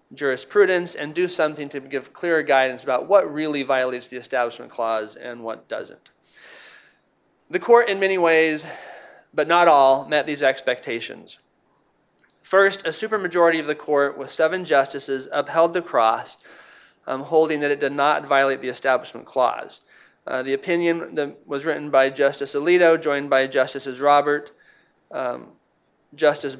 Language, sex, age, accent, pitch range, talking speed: English, male, 30-49, American, 135-165 Hz, 150 wpm